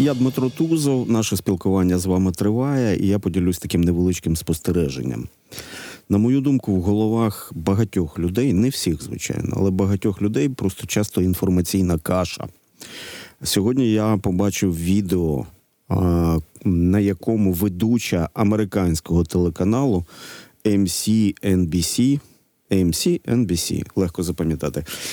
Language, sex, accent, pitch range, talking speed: Ukrainian, male, native, 90-115 Hz, 105 wpm